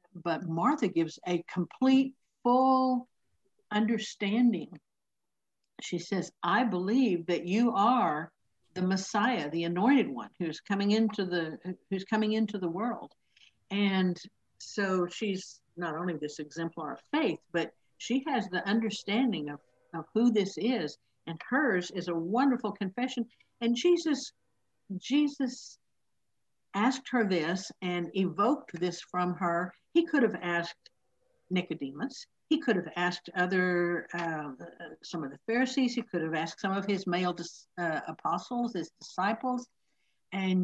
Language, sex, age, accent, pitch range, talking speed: English, female, 60-79, American, 170-225 Hz, 135 wpm